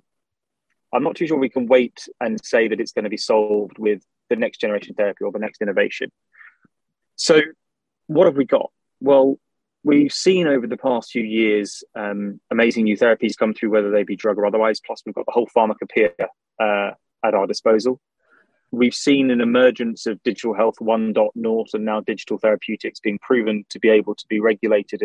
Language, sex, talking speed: English, male, 185 wpm